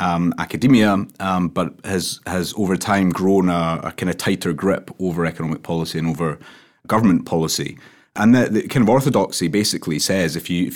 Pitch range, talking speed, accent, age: 85-95 Hz, 185 wpm, British, 30-49